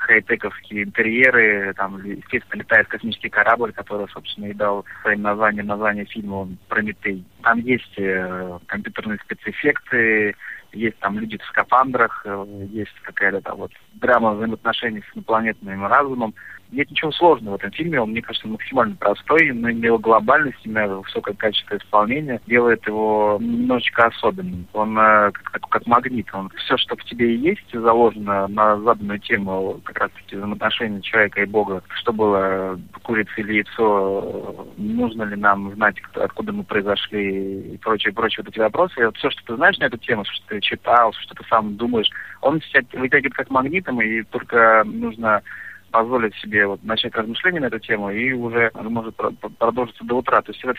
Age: 30-49